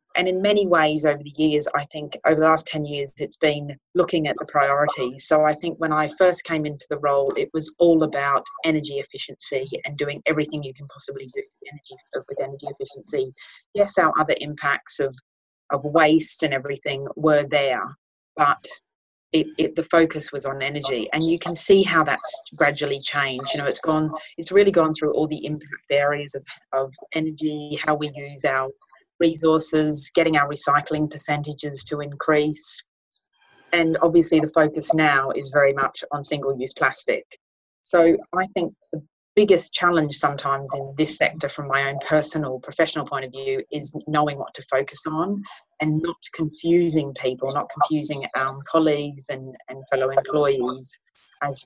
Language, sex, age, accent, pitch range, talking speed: English, female, 30-49, Australian, 140-165 Hz, 170 wpm